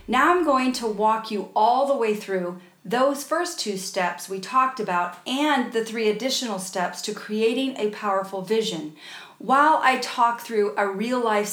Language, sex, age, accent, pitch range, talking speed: English, female, 40-59, American, 195-260 Hz, 170 wpm